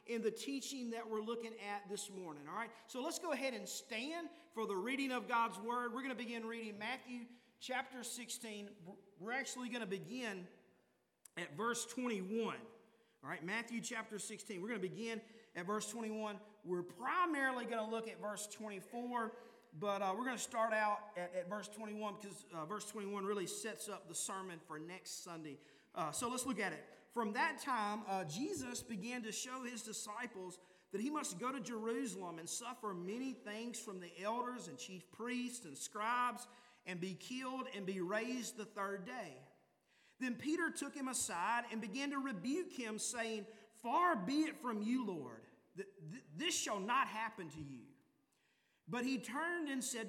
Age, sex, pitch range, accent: 40-59, male, 205-250 Hz, American